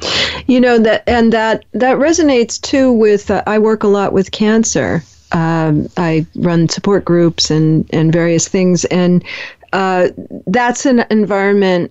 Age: 40-59